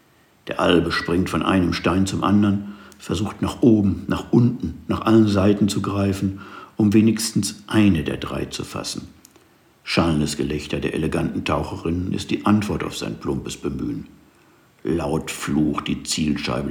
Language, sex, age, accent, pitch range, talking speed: German, male, 60-79, German, 80-100 Hz, 145 wpm